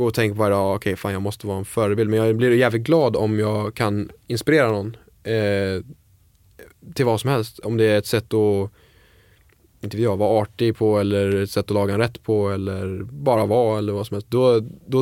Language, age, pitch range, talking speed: English, 10-29, 95-115 Hz, 215 wpm